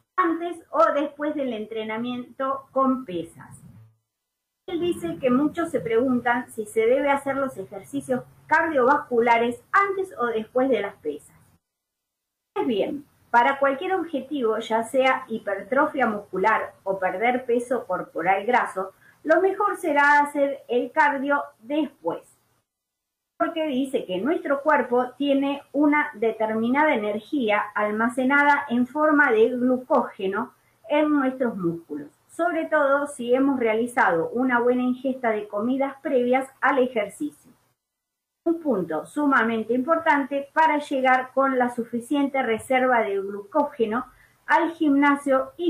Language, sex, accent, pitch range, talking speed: Spanish, female, Argentinian, 225-290 Hz, 120 wpm